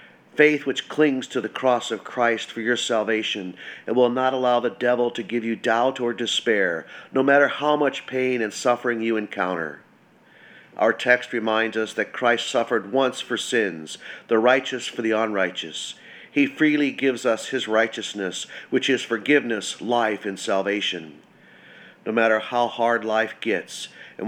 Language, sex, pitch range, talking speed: English, male, 110-130 Hz, 165 wpm